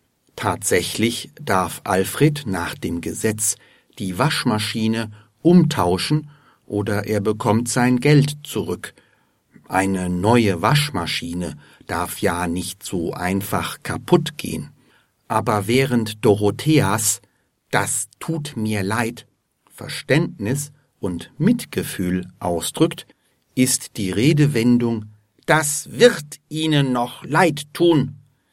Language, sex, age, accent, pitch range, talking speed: German, male, 60-79, German, 100-145 Hz, 95 wpm